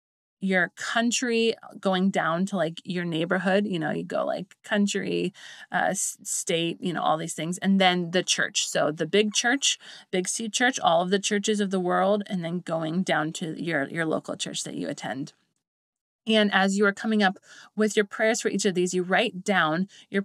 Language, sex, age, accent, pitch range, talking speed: English, female, 30-49, American, 170-210 Hz, 200 wpm